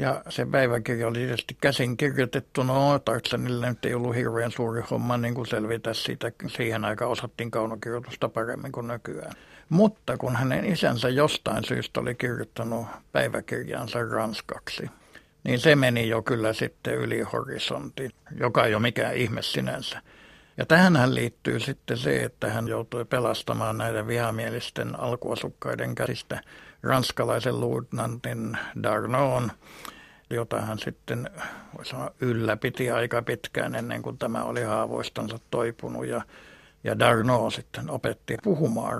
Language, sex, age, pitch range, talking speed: Finnish, male, 60-79, 115-125 Hz, 130 wpm